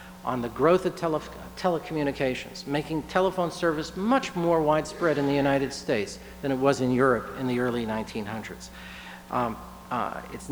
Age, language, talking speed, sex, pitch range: 50-69, English, 145 wpm, male, 125-160 Hz